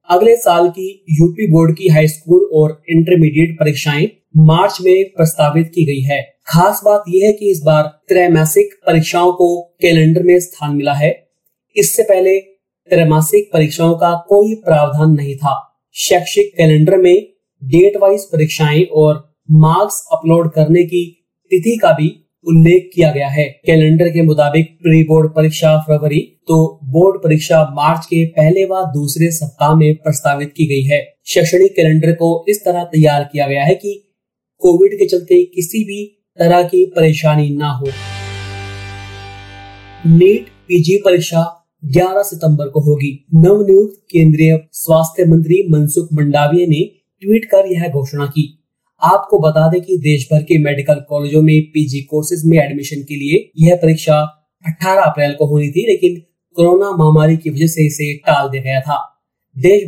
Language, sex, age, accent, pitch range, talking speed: Hindi, male, 30-49, native, 150-180 Hz, 155 wpm